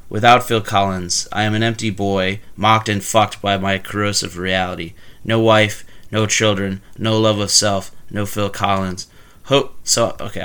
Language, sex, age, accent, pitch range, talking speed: English, male, 30-49, American, 95-110 Hz, 165 wpm